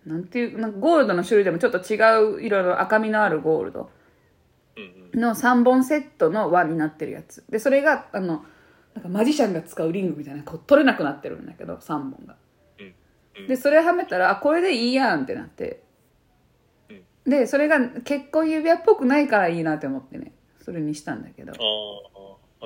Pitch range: 190-295 Hz